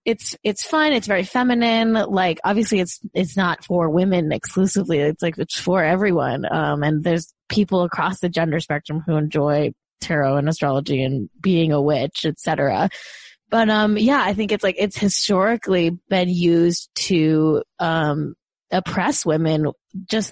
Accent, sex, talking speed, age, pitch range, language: American, female, 155 wpm, 20-39, 160-195 Hz, English